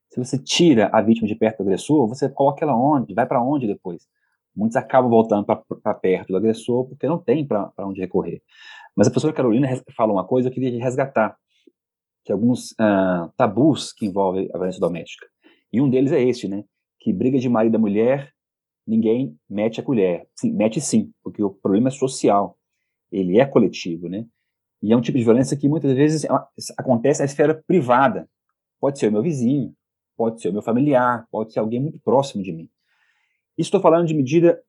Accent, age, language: Brazilian, 30-49, Portuguese